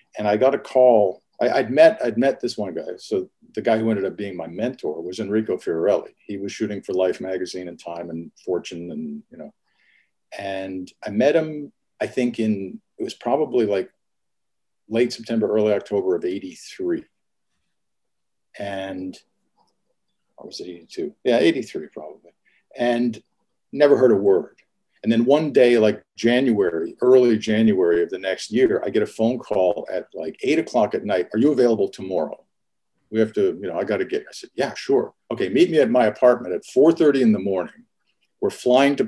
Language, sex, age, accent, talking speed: English, male, 50-69, American, 190 wpm